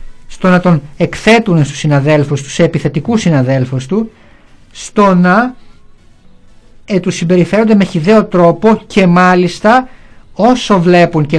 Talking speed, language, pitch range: 115 wpm, Greek, 145-195 Hz